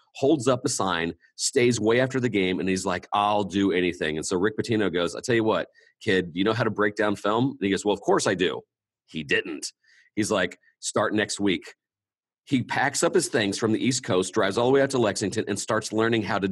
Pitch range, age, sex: 90-120 Hz, 40-59, male